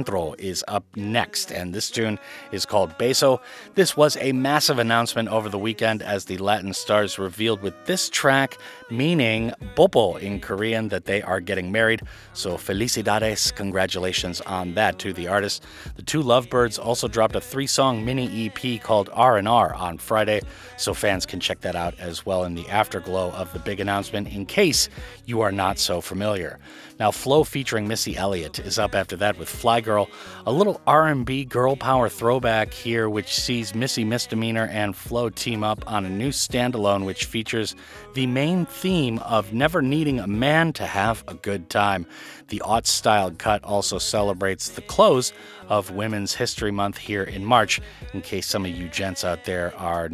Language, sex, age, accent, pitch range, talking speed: English, male, 30-49, American, 95-120 Hz, 175 wpm